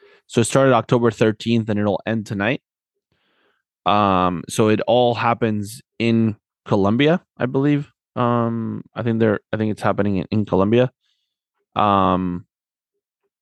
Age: 20-39